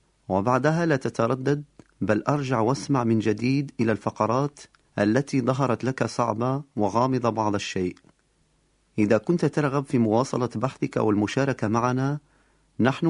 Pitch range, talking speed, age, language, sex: 110-140 Hz, 120 wpm, 40-59, Italian, male